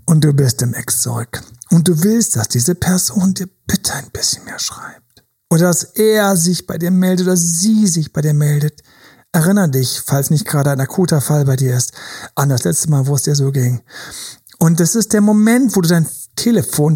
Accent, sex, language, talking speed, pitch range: German, male, German, 210 wpm, 160-215 Hz